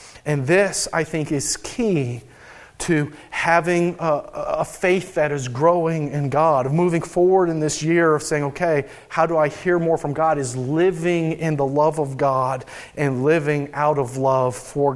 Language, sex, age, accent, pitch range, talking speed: English, male, 40-59, American, 130-160 Hz, 180 wpm